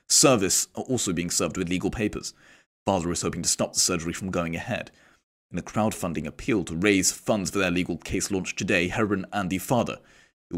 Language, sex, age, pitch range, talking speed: English, male, 30-49, 85-100 Hz, 205 wpm